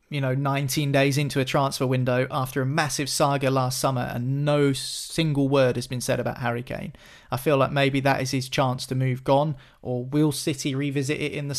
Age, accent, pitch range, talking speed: 30-49, British, 130-170 Hz, 215 wpm